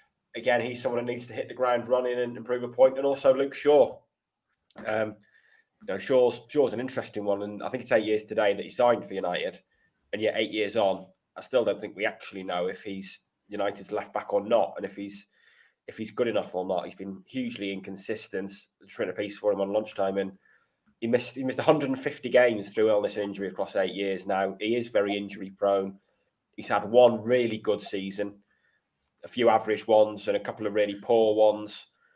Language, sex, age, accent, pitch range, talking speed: English, male, 20-39, British, 100-125 Hz, 215 wpm